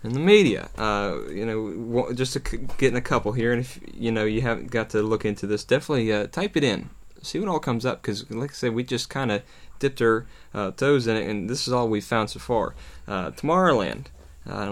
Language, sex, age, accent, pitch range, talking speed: English, male, 20-39, American, 110-130 Hz, 240 wpm